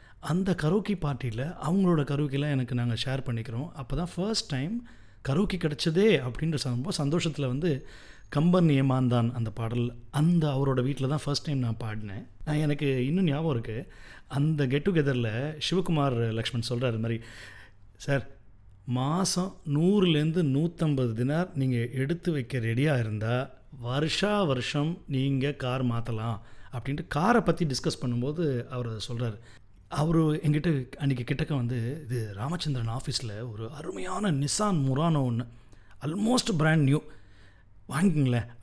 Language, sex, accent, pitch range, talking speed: Tamil, male, native, 120-155 Hz, 125 wpm